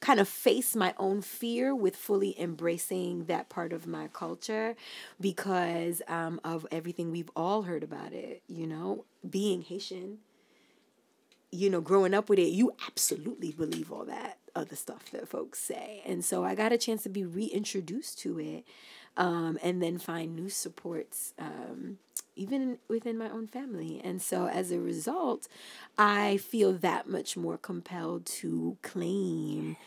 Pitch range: 175-205 Hz